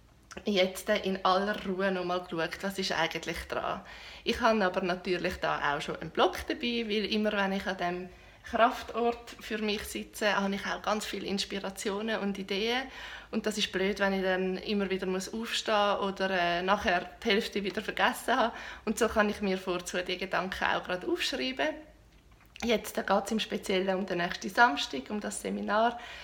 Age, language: 20-39, German